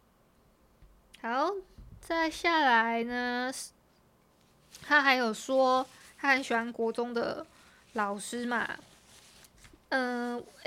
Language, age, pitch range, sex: Chinese, 20-39, 230-280 Hz, female